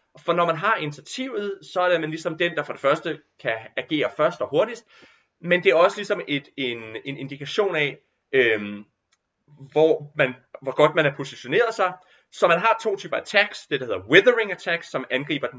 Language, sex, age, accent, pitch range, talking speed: Danish, male, 30-49, native, 145-200 Hz, 205 wpm